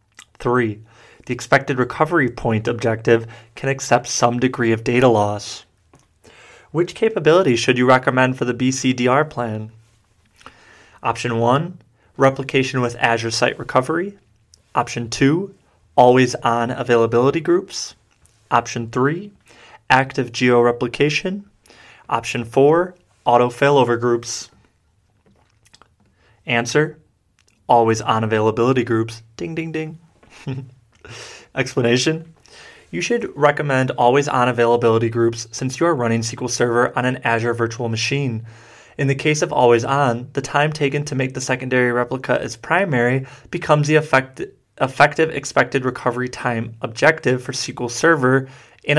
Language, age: English, 20-39